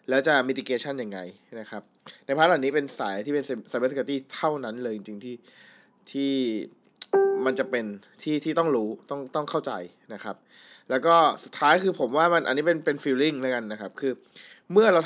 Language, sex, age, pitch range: Thai, male, 20-39, 125-155 Hz